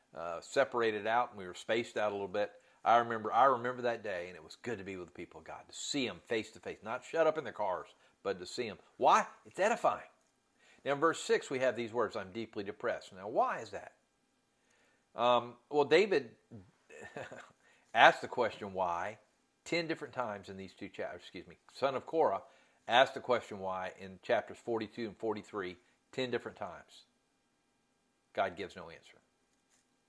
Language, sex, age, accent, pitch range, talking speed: English, male, 50-69, American, 100-120 Hz, 195 wpm